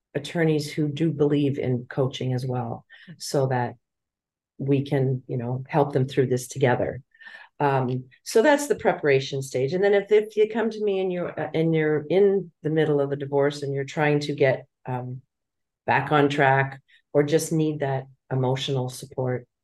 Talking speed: 180 wpm